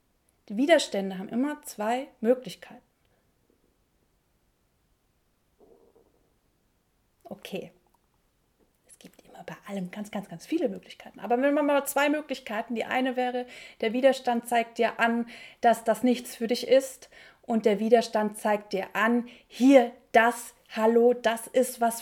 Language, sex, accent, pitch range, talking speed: German, female, German, 210-255 Hz, 130 wpm